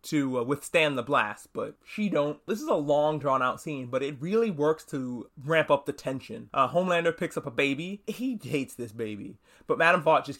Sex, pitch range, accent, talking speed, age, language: male, 140-195 Hz, American, 220 wpm, 20-39, English